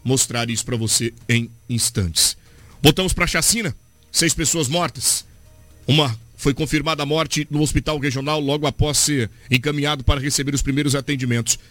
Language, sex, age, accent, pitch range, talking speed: Portuguese, male, 50-69, Brazilian, 110-150 Hz, 155 wpm